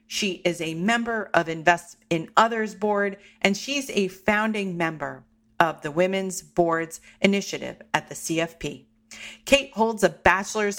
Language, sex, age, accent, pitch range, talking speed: English, female, 40-59, American, 165-200 Hz, 145 wpm